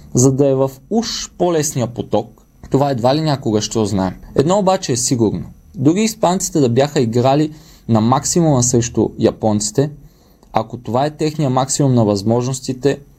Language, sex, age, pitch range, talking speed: Bulgarian, male, 20-39, 120-160 Hz, 150 wpm